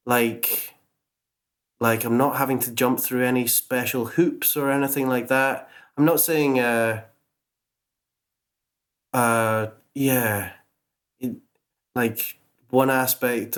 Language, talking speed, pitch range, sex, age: English, 110 wpm, 115-135 Hz, male, 20-39